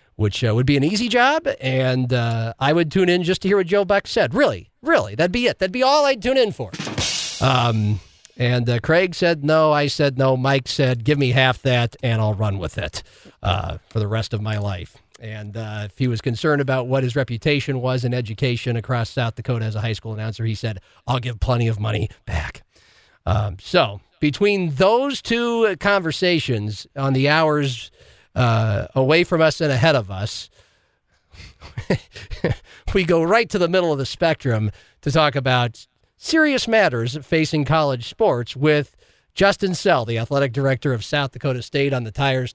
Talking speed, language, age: 190 wpm, English, 40-59